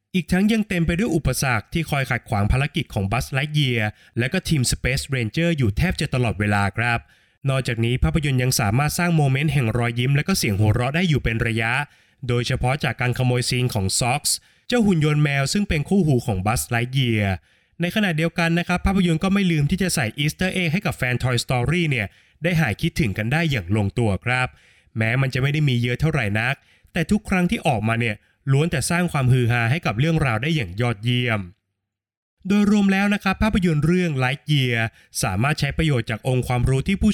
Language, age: Thai, 20-39